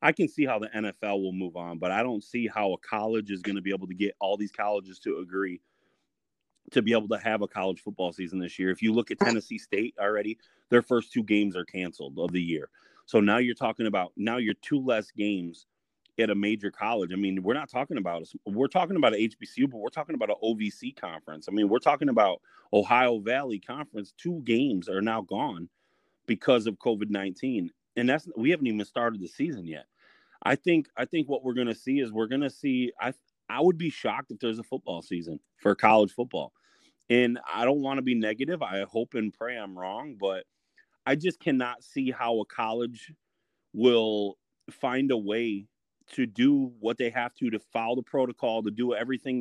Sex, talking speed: male, 215 wpm